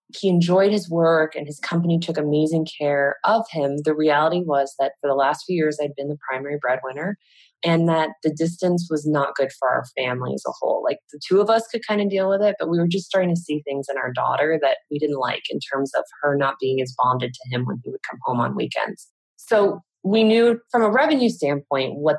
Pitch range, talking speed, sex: 135-175 Hz, 245 wpm, female